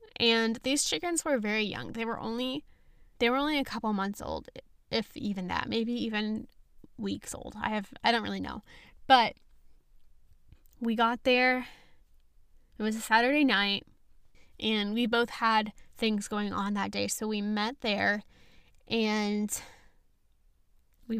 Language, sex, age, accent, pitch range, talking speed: English, female, 10-29, American, 210-255 Hz, 150 wpm